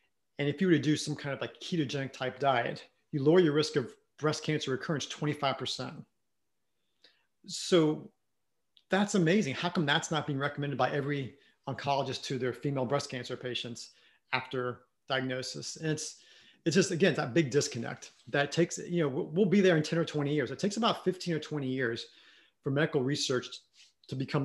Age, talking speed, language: 40-59, 180 wpm, English